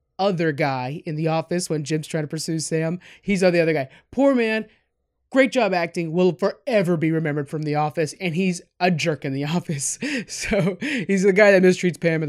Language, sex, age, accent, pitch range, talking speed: English, male, 30-49, American, 150-180 Hz, 205 wpm